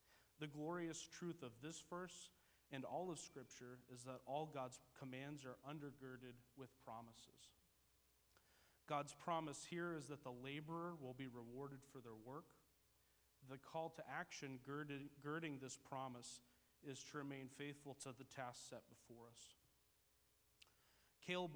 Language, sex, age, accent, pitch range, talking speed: English, male, 30-49, American, 130-150 Hz, 140 wpm